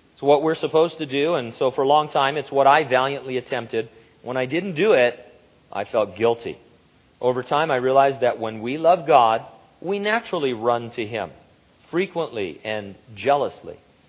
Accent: American